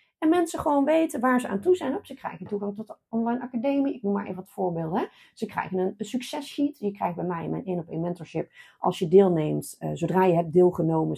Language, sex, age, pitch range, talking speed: Dutch, female, 30-49, 180-245 Hz, 245 wpm